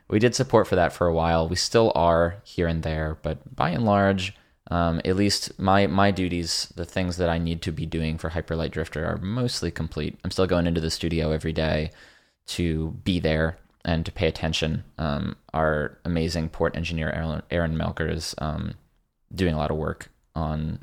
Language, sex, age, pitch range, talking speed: English, male, 20-39, 85-130 Hz, 200 wpm